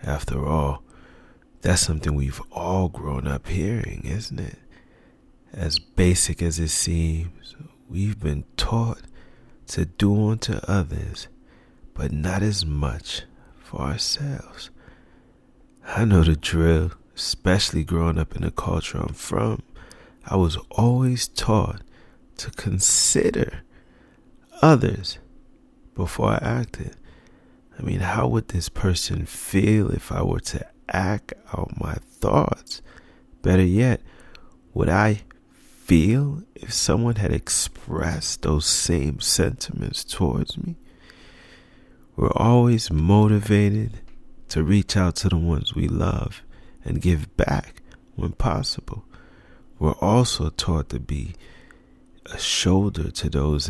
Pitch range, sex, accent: 80-110 Hz, male, American